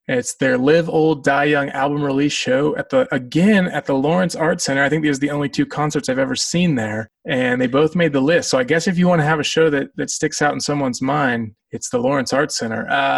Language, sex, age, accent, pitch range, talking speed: English, male, 20-39, American, 130-180 Hz, 265 wpm